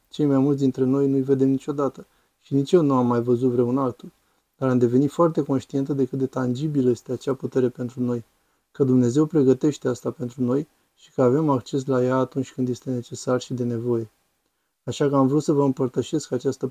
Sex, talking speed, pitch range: male, 210 wpm, 125-140 Hz